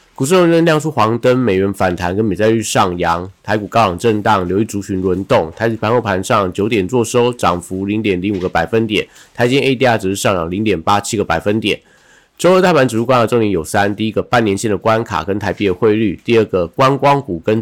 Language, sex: Chinese, male